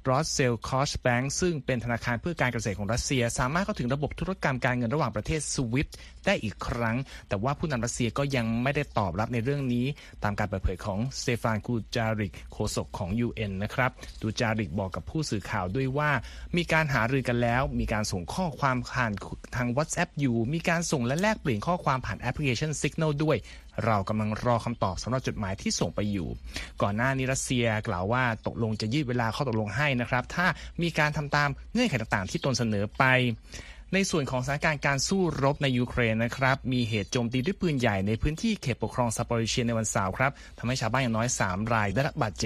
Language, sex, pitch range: Thai, male, 110-145 Hz